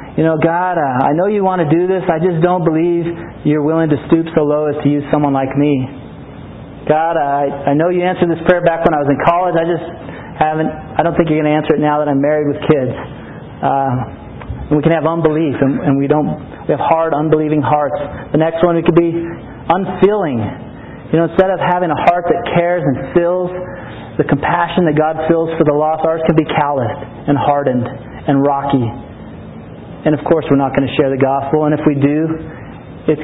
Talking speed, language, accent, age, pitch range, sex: 220 wpm, English, American, 40-59, 145-175 Hz, male